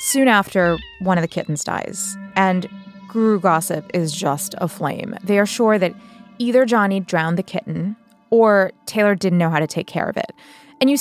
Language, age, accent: English, 20-39, American